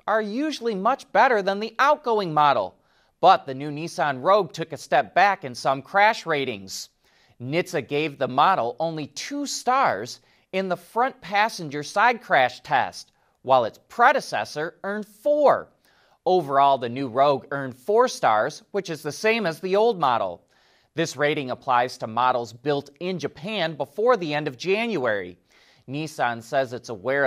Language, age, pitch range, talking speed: English, 30-49, 135-205 Hz, 160 wpm